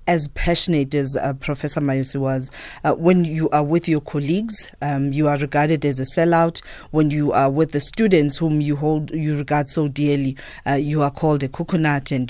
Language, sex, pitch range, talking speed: English, female, 140-160 Hz, 200 wpm